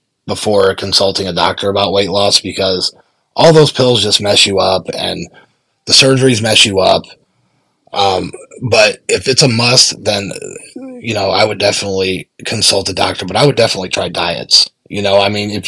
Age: 30-49